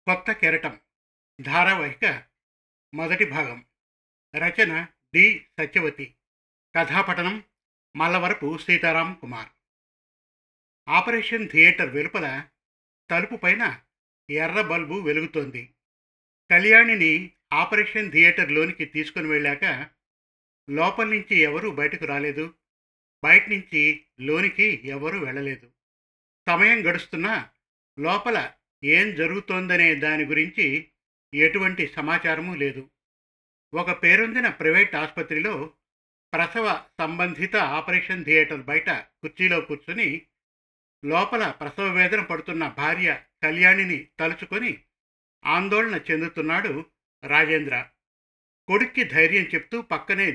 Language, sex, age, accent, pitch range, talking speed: Telugu, male, 50-69, native, 145-185 Hz, 80 wpm